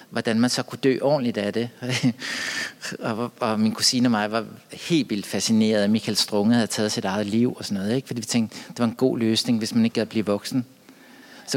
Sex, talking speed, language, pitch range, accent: male, 240 wpm, English, 110-130 Hz, Danish